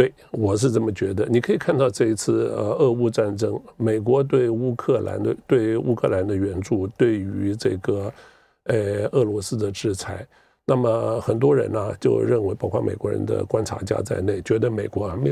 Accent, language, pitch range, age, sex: American, Chinese, 105-125 Hz, 50-69, male